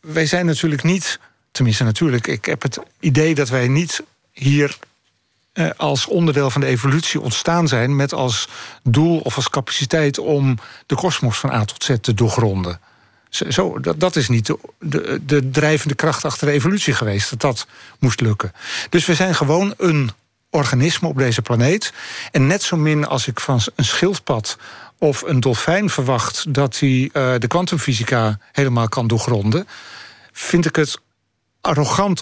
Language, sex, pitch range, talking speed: Dutch, male, 120-155 Hz, 165 wpm